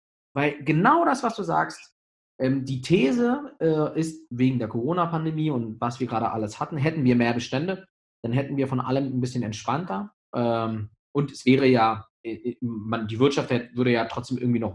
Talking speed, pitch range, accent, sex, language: 165 wpm, 120-160 Hz, German, male, German